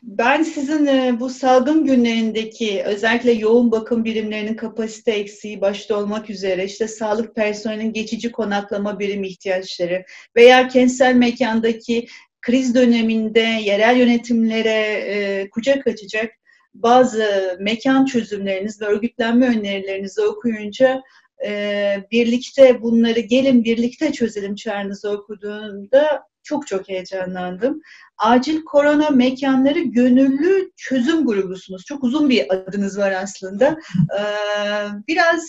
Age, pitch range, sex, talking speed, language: 40-59, 210-255 Hz, female, 105 wpm, Turkish